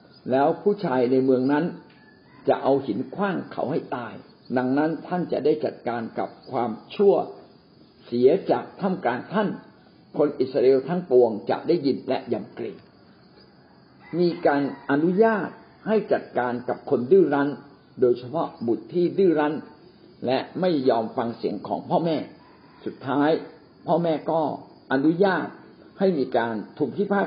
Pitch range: 130-180 Hz